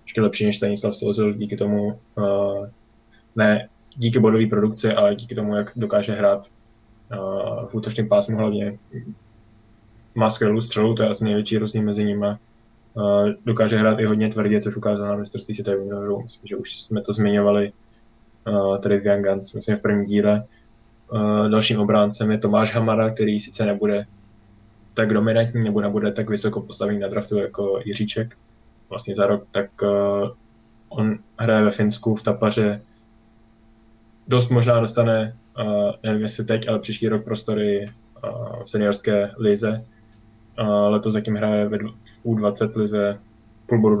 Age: 10-29